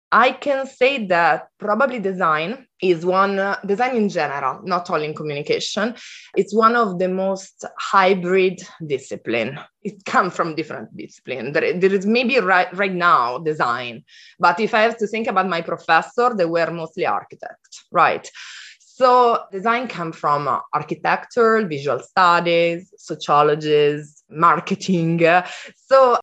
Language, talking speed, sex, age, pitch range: English, 135 wpm, female, 20-39, 165-220 Hz